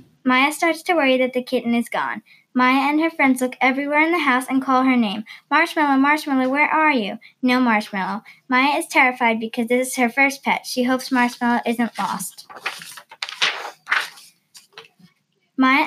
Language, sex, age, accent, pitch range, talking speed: English, female, 10-29, American, 240-280 Hz, 165 wpm